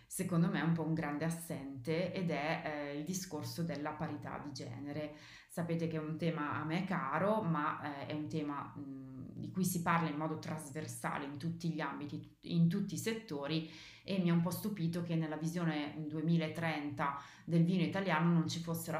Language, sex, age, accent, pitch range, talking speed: Italian, female, 30-49, native, 150-170 Hz, 195 wpm